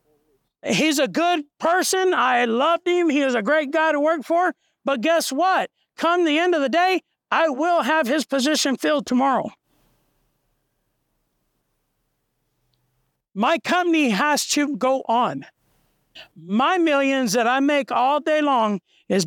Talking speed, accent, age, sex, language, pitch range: 145 wpm, American, 50-69, male, English, 230-295 Hz